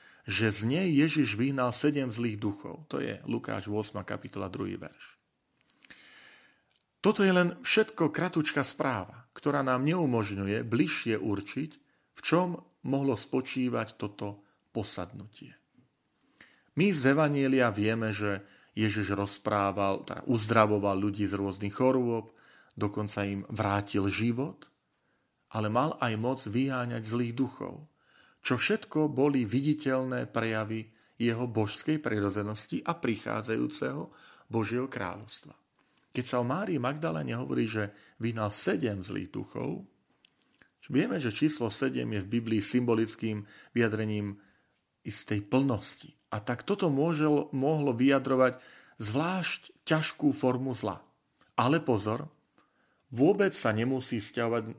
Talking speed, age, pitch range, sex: 115 wpm, 40-59, 105-135 Hz, male